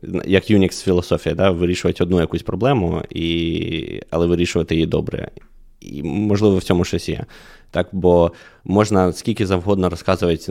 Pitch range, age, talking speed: 85-95 Hz, 20-39, 145 wpm